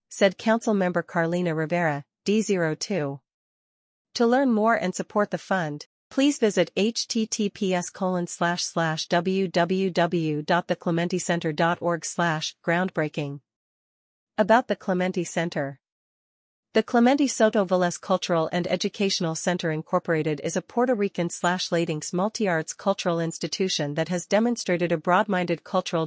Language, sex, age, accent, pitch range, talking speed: English, female, 40-59, American, 160-195 Hz, 115 wpm